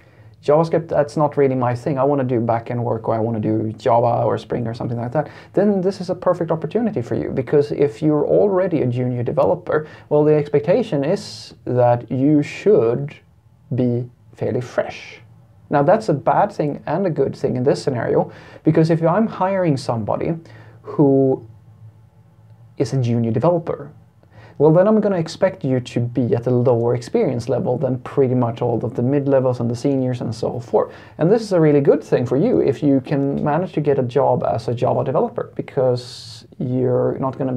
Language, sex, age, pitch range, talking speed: English, male, 30-49, 120-150 Hz, 195 wpm